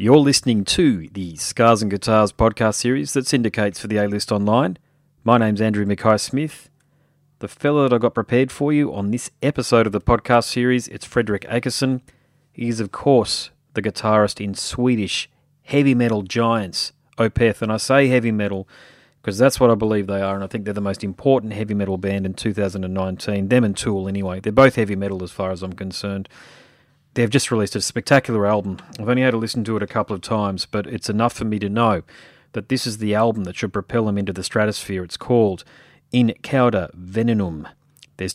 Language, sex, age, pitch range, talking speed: English, male, 30-49, 100-125 Hz, 200 wpm